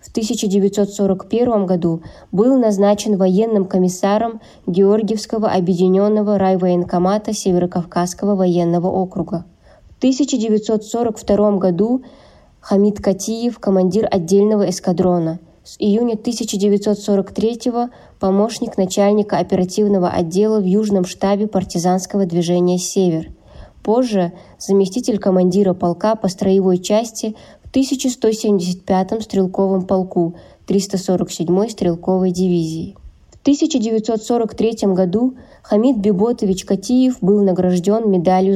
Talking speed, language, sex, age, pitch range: 90 wpm, Russian, female, 20-39, 185-220 Hz